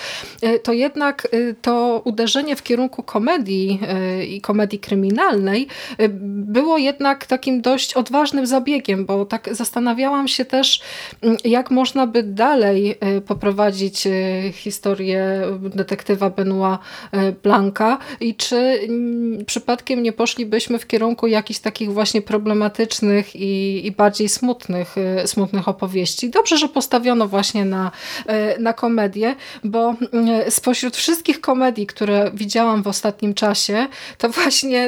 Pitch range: 195-250 Hz